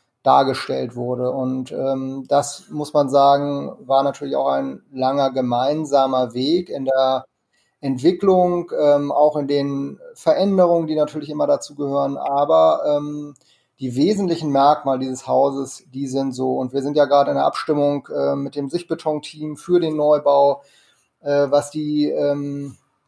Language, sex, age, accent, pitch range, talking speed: German, male, 30-49, German, 135-150 Hz, 150 wpm